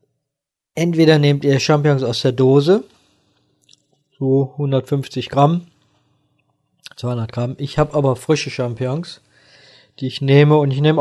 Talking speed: 125 wpm